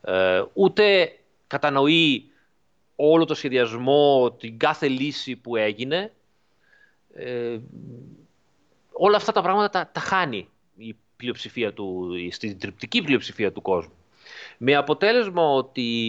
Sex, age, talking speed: male, 30-49, 110 wpm